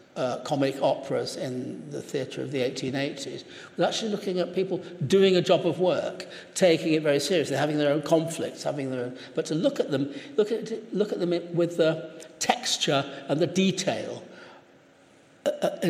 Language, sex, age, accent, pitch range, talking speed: English, male, 60-79, British, 130-175 Hz, 175 wpm